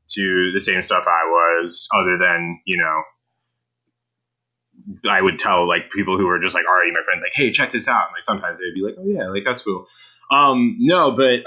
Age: 20-39